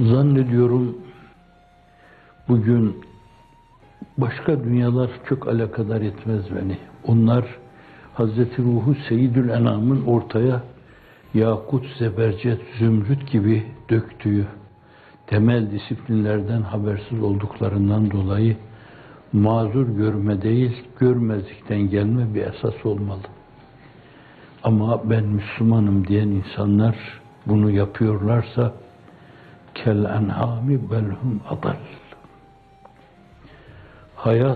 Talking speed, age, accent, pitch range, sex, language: 70 wpm, 60-79, native, 105-120 Hz, male, Turkish